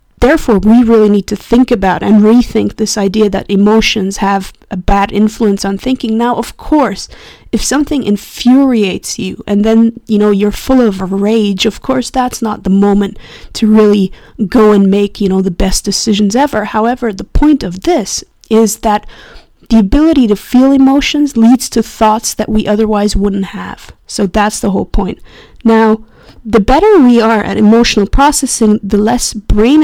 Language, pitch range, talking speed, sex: English, 205-240 Hz, 175 wpm, female